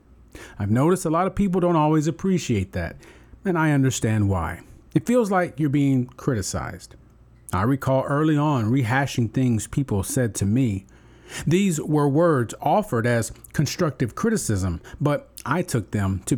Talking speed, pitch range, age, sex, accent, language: 155 wpm, 100-145 Hz, 40-59, male, American, English